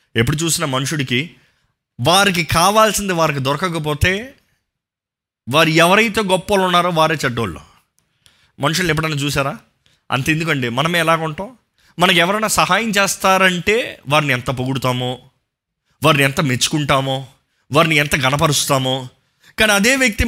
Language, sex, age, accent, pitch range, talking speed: Telugu, male, 20-39, native, 115-165 Hz, 105 wpm